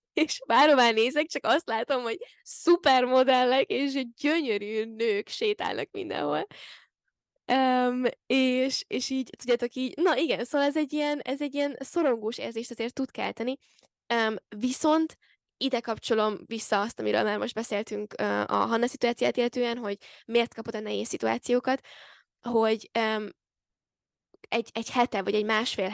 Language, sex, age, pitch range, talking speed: Hungarian, female, 10-29, 215-260 Hz, 140 wpm